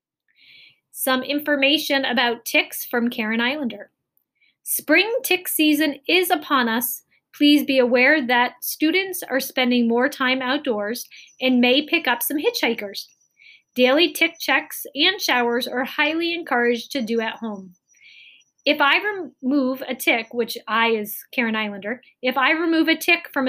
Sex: female